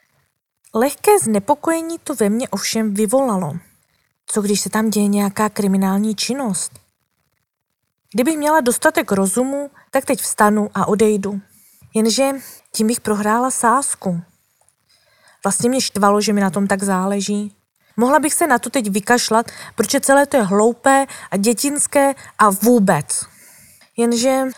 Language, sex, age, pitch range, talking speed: Czech, female, 20-39, 195-250 Hz, 135 wpm